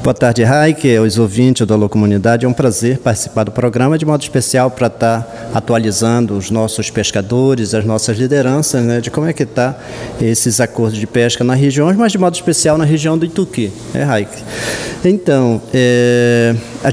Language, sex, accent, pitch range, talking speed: Portuguese, male, Brazilian, 120-145 Hz, 185 wpm